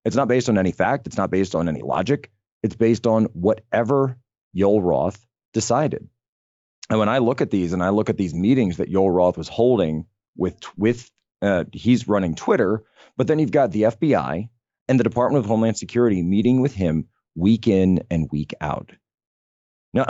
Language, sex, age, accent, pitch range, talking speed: English, male, 40-59, American, 90-120 Hz, 190 wpm